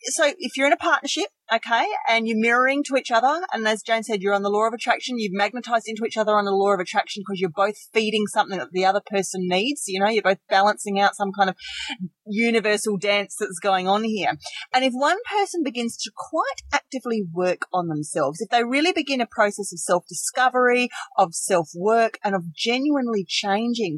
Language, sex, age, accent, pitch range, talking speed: English, female, 30-49, Australian, 195-250 Hz, 210 wpm